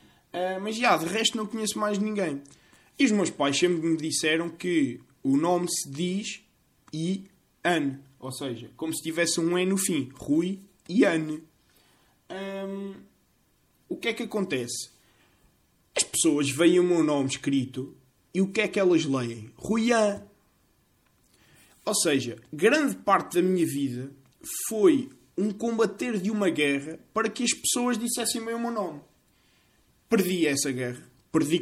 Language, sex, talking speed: Portuguese, male, 155 wpm